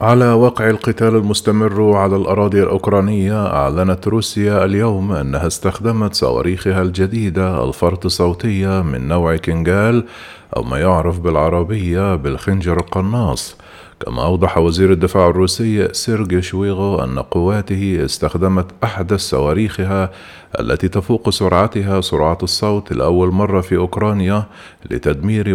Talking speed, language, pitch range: 110 wpm, Arabic, 85-105 Hz